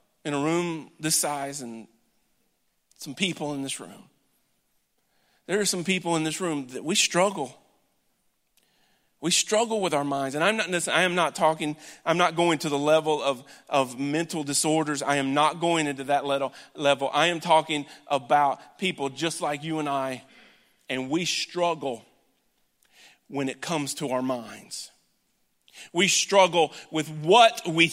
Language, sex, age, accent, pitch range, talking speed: English, male, 40-59, American, 150-195 Hz, 160 wpm